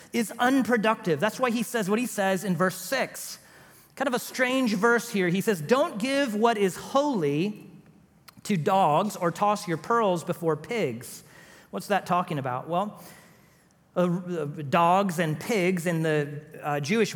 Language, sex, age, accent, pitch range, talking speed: English, male, 40-59, American, 175-235 Hz, 160 wpm